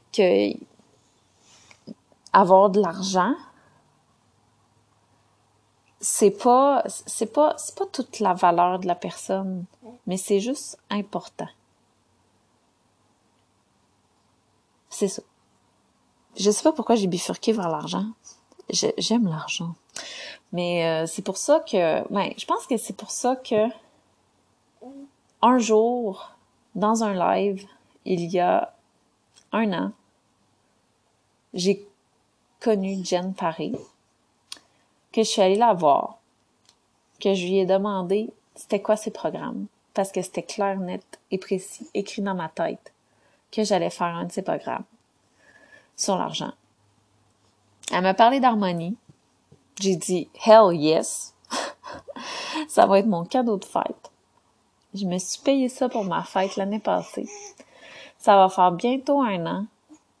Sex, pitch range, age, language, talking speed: female, 180-230 Hz, 30-49, French, 125 wpm